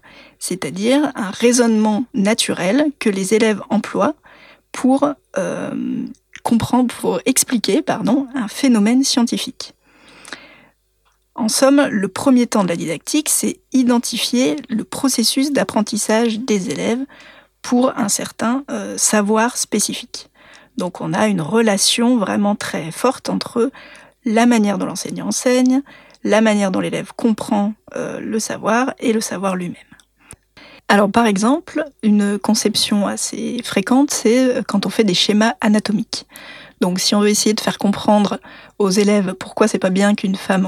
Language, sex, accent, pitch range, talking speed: French, female, French, 205-265 Hz, 140 wpm